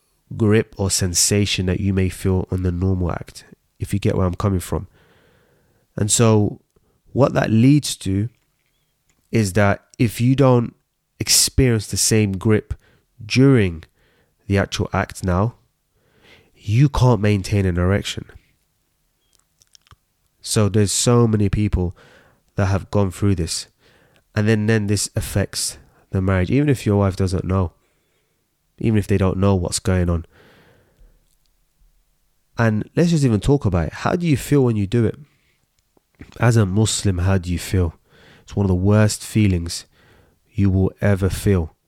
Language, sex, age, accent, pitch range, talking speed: English, male, 20-39, British, 95-115 Hz, 150 wpm